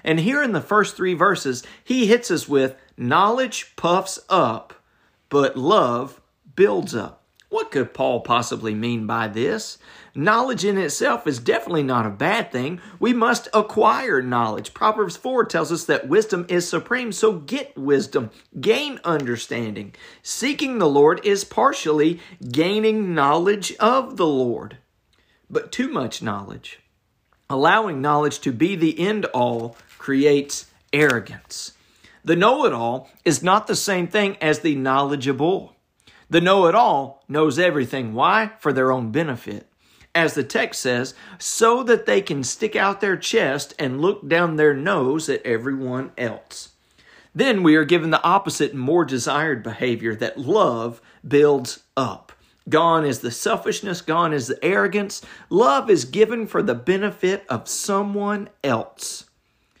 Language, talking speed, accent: English, 150 wpm, American